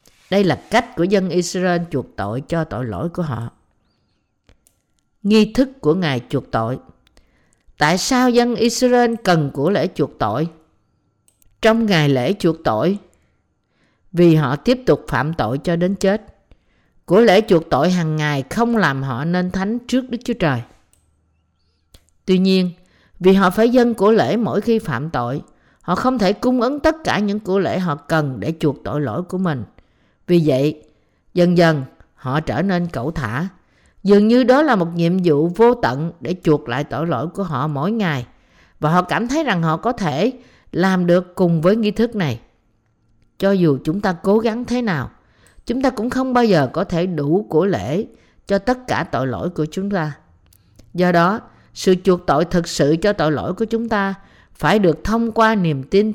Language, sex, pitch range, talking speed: Vietnamese, female, 140-205 Hz, 185 wpm